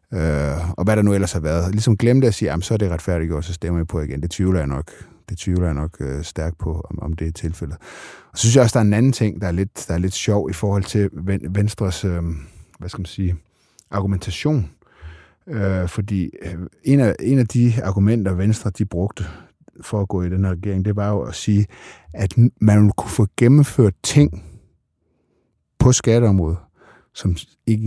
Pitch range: 85-110 Hz